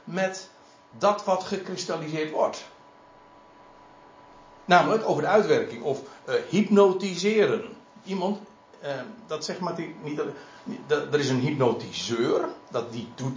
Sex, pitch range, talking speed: male, 140-205 Hz, 115 wpm